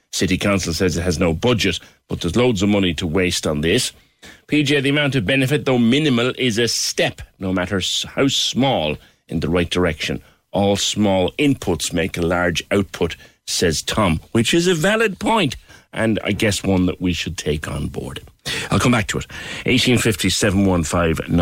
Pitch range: 85-115 Hz